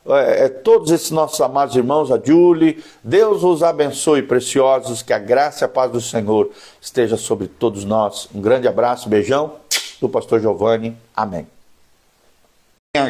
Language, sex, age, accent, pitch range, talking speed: Portuguese, male, 50-69, Brazilian, 120-175 Hz, 145 wpm